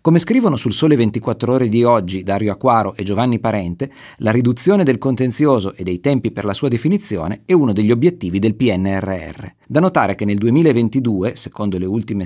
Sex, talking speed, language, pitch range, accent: male, 185 wpm, Italian, 105-155 Hz, native